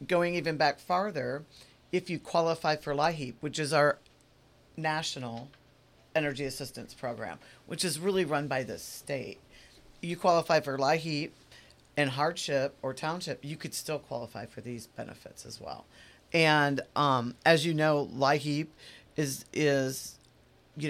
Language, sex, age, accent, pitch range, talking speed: English, female, 40-59, American, 130-150 Hz, 140 wpm